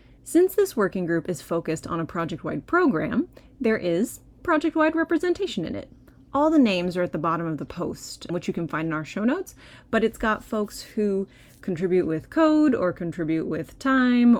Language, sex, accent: English, female, American